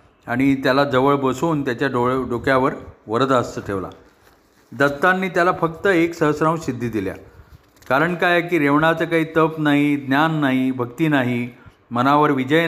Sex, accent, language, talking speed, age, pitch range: male, native, Marathi, 140 wpm, 40-59, 130-160 Hz